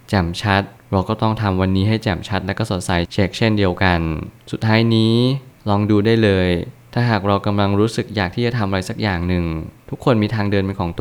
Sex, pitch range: male, 95-115 Hz